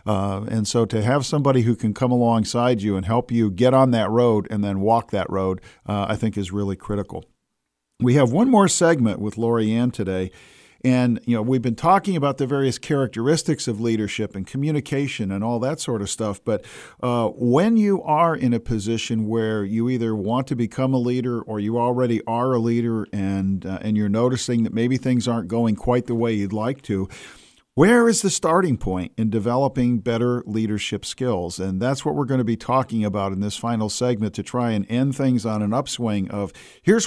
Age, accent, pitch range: 50-69, American, 105-130 Hz